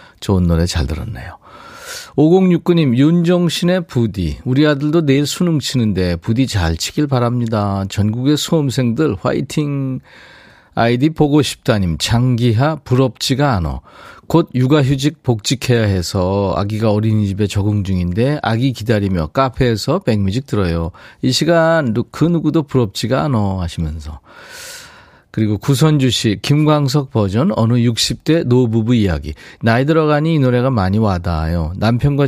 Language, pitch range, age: Korean, 95-140 Hz, 40-59